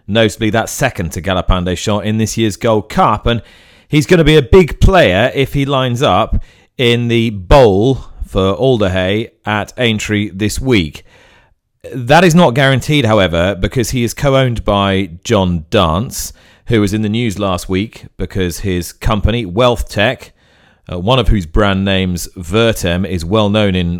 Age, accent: 40-59, British